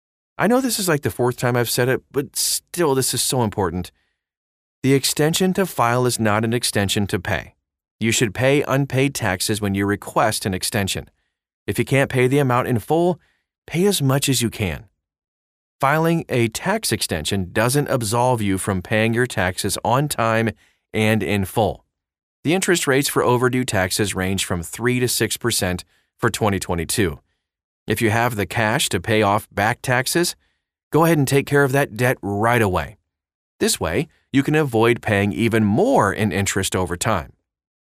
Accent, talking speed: American, 175 wpm